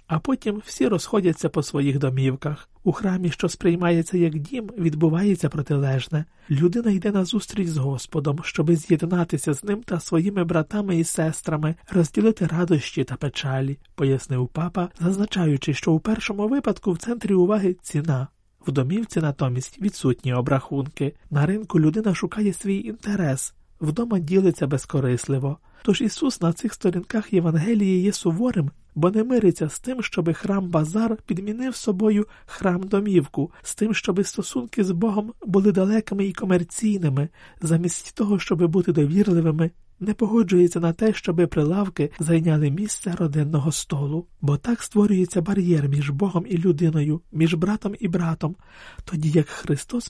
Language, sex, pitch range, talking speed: Ukrainian, male, 150-200 Hz, 140 wpm